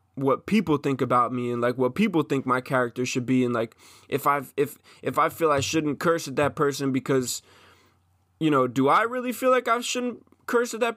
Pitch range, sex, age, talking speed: 105-145 Hz, male, 20-39, 225 wpm